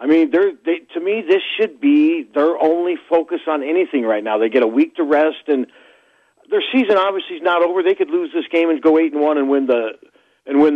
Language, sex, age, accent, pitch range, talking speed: English, male, 50-69, American, 145-180 Hz, 240 wpm